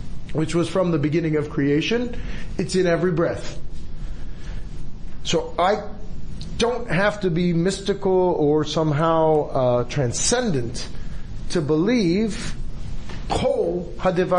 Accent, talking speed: American, 100 wpm